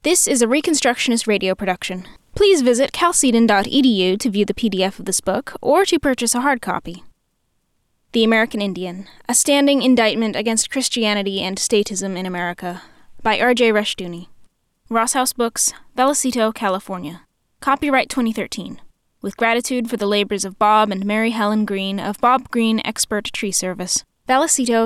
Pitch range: 200-255 Hz